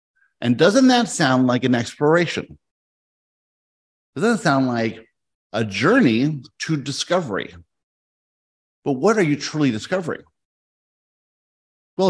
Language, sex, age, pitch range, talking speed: English, male, 50-69, 105-160 Hz, 110 wpm